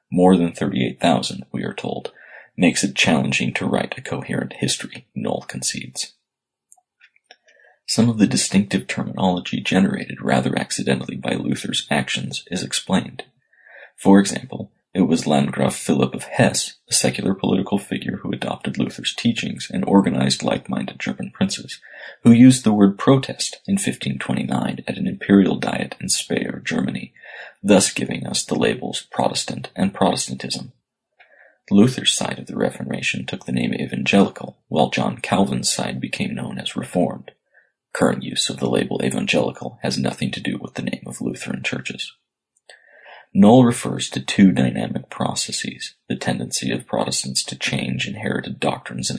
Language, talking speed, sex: English, 145 wpm, male